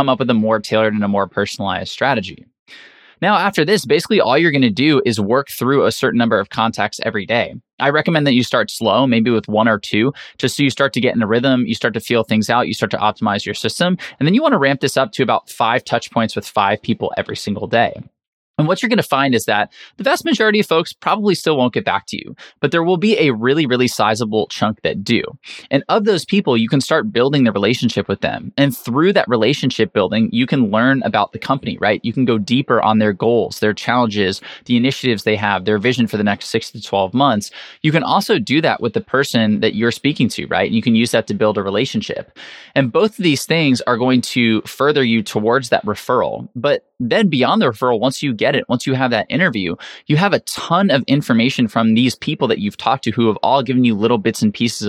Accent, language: American, English